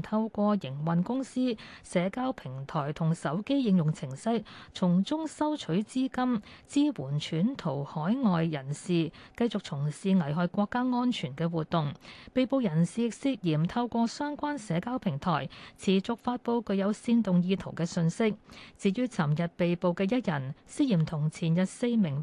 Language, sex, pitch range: Chinese, female, 165-230 Hz